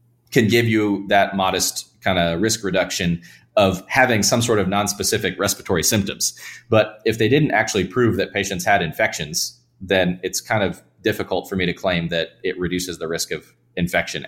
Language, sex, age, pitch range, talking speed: English, male, 30-49, 90-115 Hz, 180 wpm